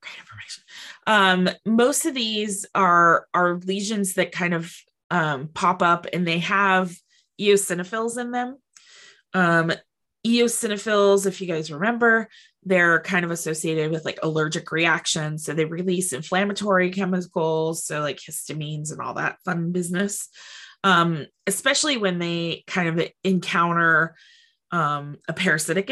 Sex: female